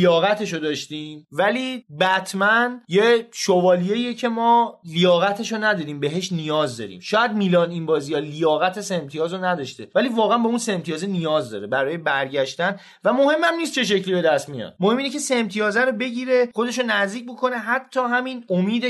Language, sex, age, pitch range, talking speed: Persian, male, 30-49, 155-220 Hz, 170 wpm